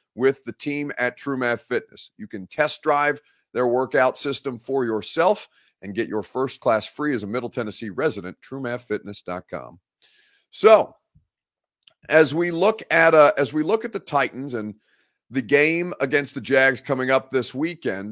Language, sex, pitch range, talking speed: English, male, 125-155 Hz, 160 wpm